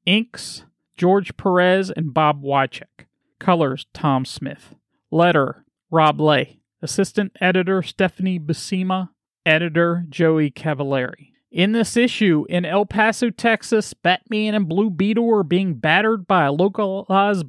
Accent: American